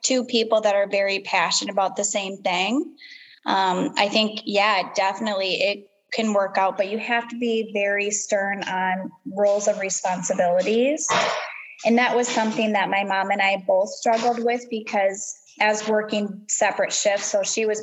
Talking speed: 170 wpm